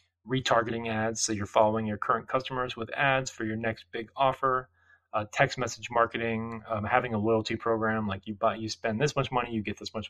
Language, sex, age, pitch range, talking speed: English, male, 20-39, 110-130 Hz, 215 wpm